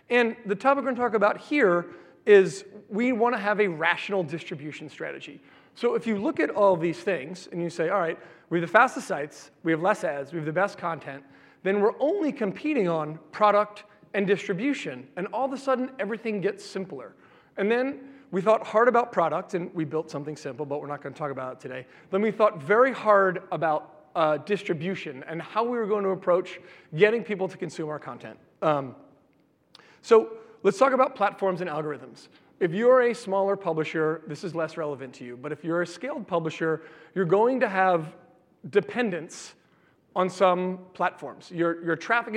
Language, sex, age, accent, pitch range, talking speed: English, male, 30-49, American, 160-210 Hz, 195 wpm